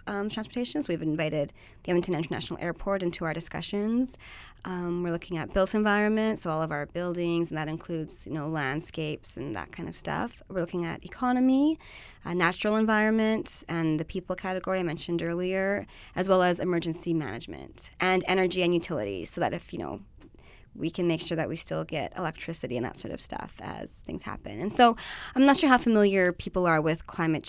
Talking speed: 195 wpm